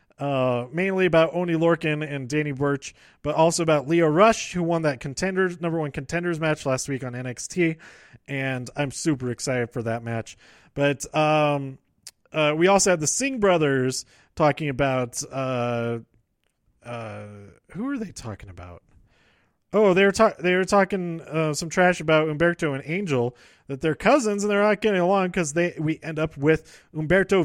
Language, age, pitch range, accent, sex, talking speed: English, 30-49, 130-170 Hz, American, male, 175 wpm